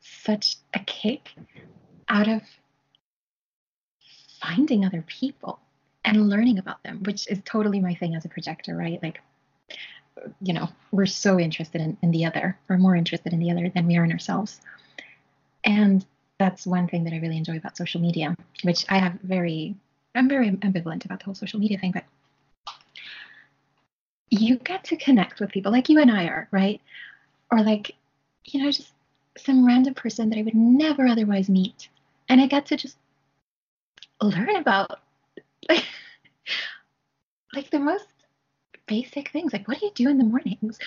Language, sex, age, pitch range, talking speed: English, female, 30-49, 185-250 Hz, 165 wpm